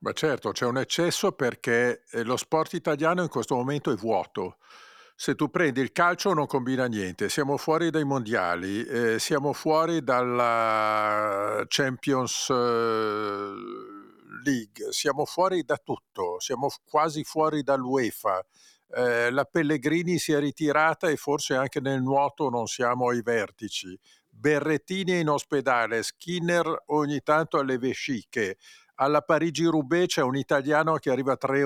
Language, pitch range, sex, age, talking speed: Italian, 130-170 Hz, male, 50-69, 135 wpm